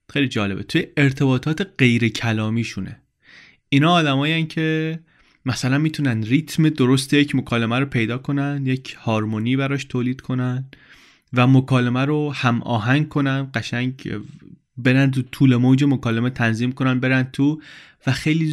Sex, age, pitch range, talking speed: male, 20-39, 110-140 Hz, 135 wpm